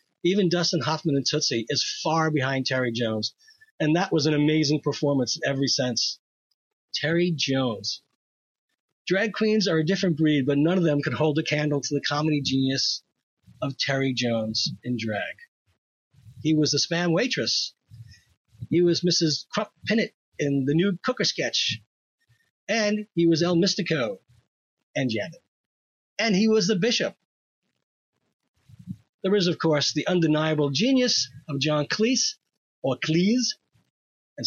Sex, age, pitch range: male, 40-59, 135-175 Hz